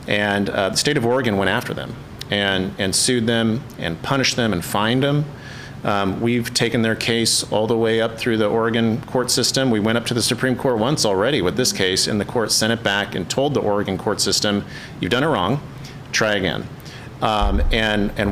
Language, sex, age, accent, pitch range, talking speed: English, male, 40-59, American, 100-120 Hz, 215 wpm